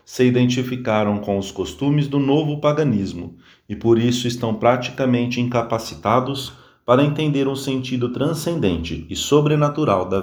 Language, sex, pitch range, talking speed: English, male, 105-130 Hz, 130 wpm